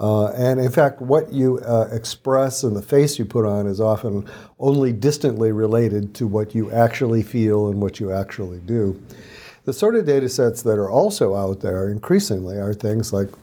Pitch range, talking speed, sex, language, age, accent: 105-130 Hz, 190 wpm, male, English, 50-69, American